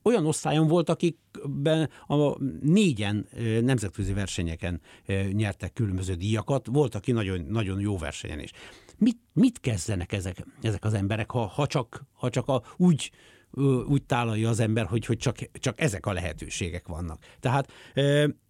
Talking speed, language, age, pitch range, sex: 135 wpm, Hungarian, 60-79, 105-140 Hz, male